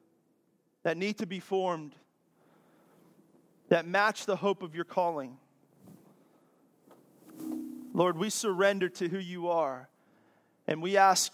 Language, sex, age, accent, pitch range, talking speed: English, male, 40-59, American, 165-195 Hz, 115 wpm